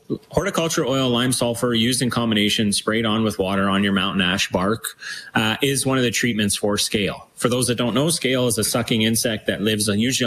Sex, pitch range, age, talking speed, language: male, 105-130 Hz, 30-49, 215 wpm, English